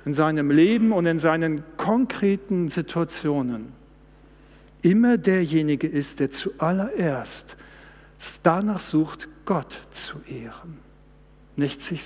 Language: German